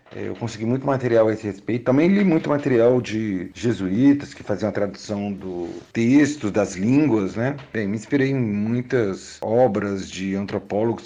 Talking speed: 165 wpm